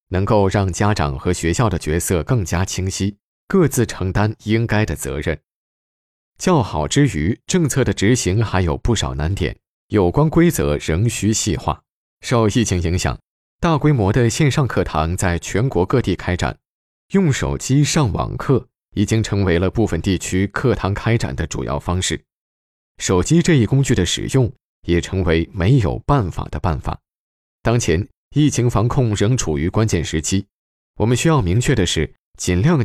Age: 20-39